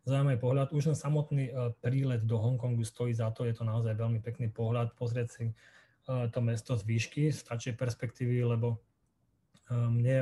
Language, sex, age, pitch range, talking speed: Slovak, male, 20-39, 115-135 Hz, 160 wpm